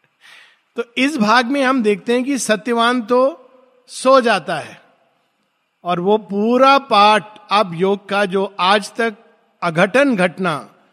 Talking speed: 135 wpm